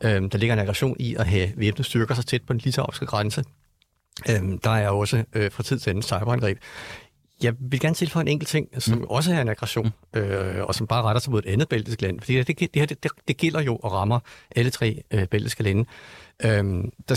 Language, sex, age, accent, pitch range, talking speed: Danish, male, 60-79, native, 105-135 Hz, 210 wpm